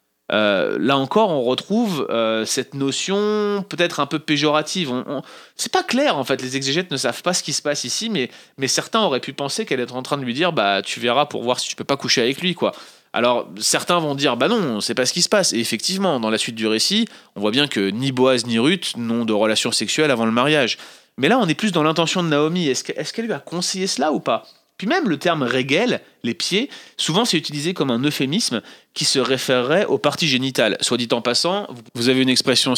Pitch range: 120-160 Hz